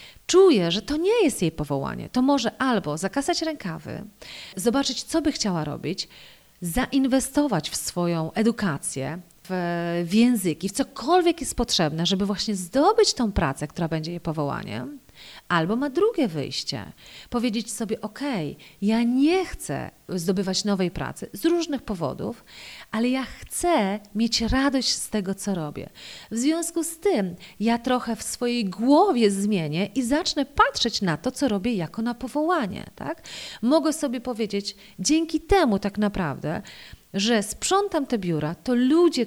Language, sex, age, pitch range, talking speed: Polish, female, 40-59, 185-280 Hz, 145 wpm